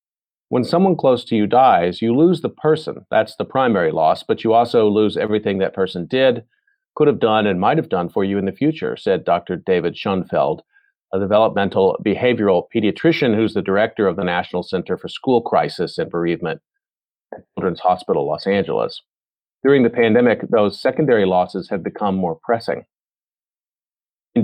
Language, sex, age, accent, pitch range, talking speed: English, male, 40-59, American, 95-135 Hz, 170 wpm